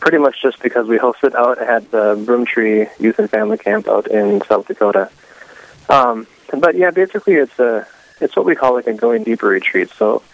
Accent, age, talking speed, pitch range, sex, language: American, 20-39, 195 wpm, 110-130 Hz, male, English